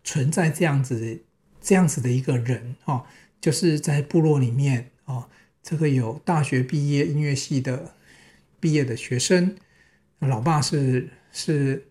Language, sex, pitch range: Chinese, male, 130-165 Hz